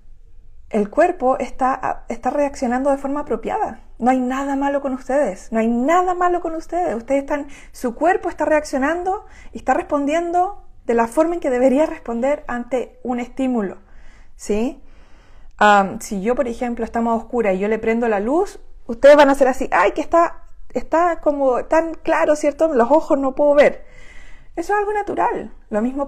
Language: Spanish